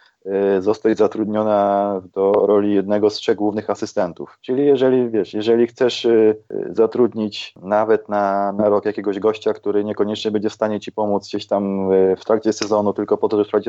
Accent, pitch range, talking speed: native, 100-115 Hz, 165 wpm